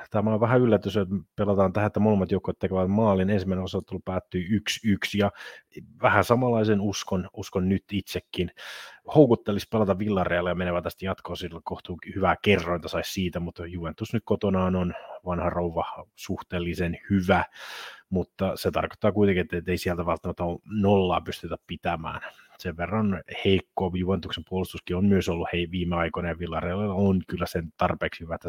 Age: 30-49